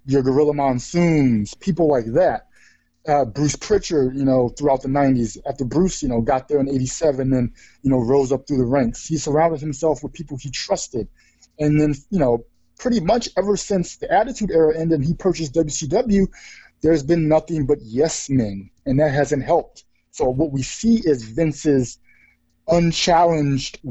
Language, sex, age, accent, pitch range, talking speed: English, male, 20-39, American, 130-165 Hz, 175 wpm